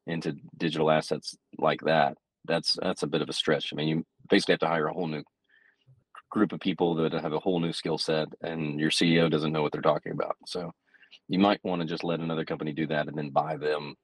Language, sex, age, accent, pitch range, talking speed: English, male, 30-49, American, 75-85 Hz, 240 wpm